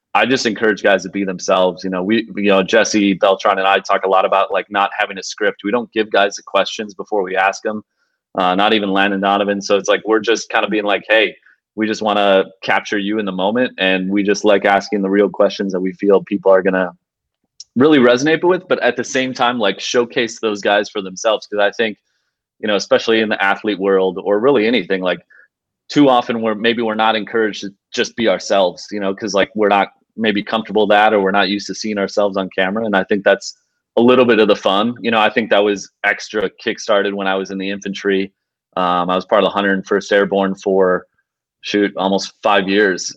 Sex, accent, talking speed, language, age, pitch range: male, American, 235 wpm, English, 30-49, 95-105 Hz